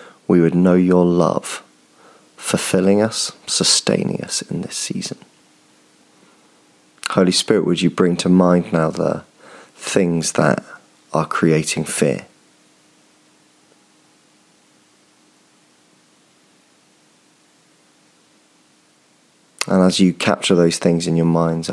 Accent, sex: British, male